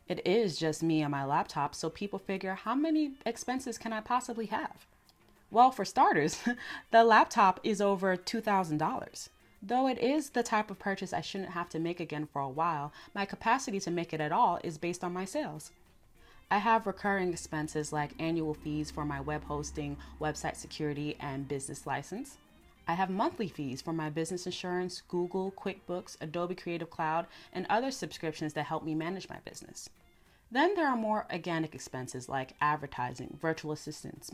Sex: female